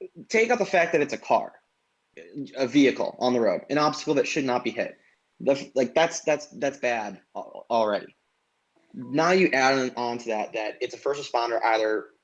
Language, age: English, 20-39